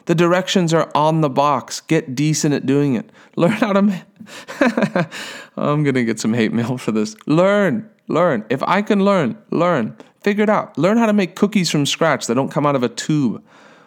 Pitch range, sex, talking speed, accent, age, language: 140-200 Hz, male, 205 wpm, American, 40-59, English